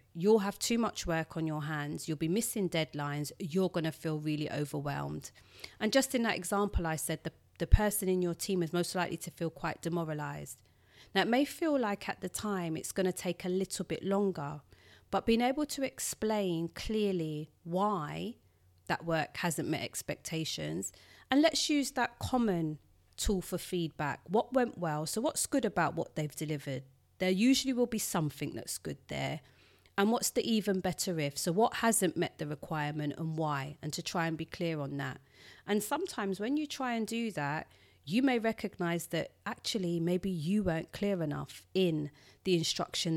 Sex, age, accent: female, 30-49, British